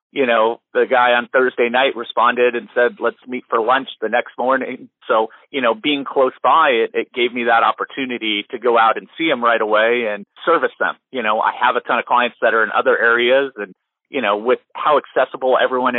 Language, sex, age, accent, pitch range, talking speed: English, male, 40-59, American, 115-150 Hz, 225 wpm